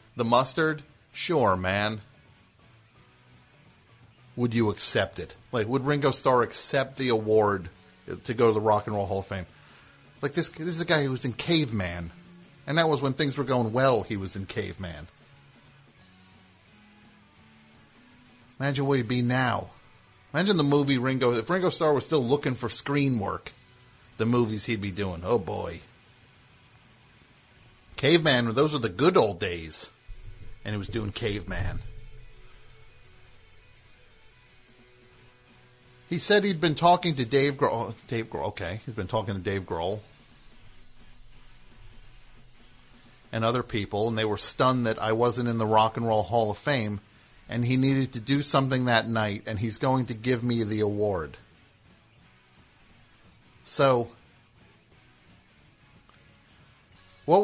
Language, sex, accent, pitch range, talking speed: English, male, American, 105-130 Hz, 145 wpm